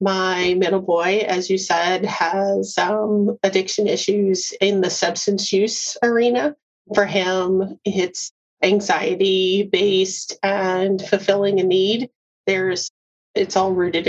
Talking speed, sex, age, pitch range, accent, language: 120 wpm, female, 30-49, 185-210 Hz, American, English